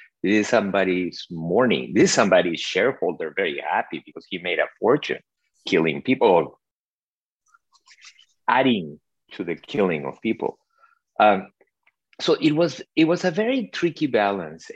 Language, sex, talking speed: English, male, 135 wpm